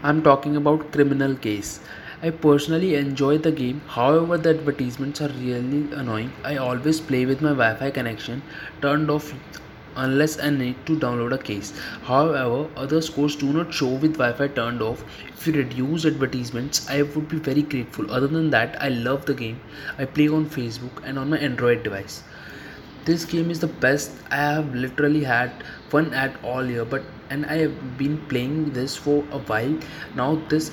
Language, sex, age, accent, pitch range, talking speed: Russian, male, 20-39, Indian, 130-155 Hz, 180 wpm